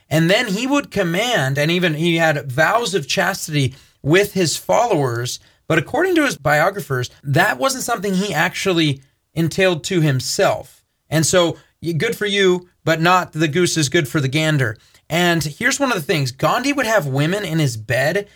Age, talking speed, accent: 30-49, 180 wpm, American